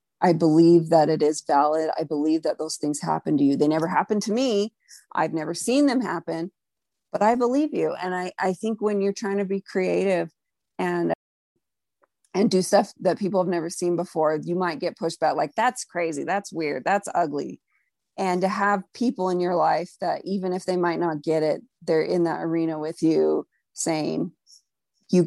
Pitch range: 160-190 Hz